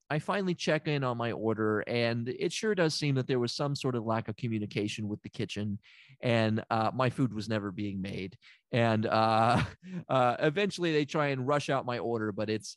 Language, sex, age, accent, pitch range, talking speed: English, male, 30-49, American, 115-165 Hz, 210 wpm